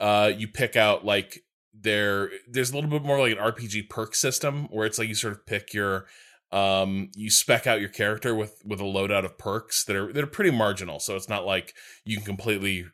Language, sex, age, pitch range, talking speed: English, male, 20-39, 90-115 Hz, 225 wpm